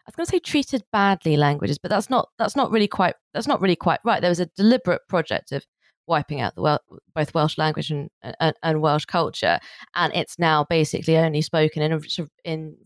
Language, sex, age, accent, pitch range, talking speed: English, female, 20-39, British, 150-190 Hz, 215 wpm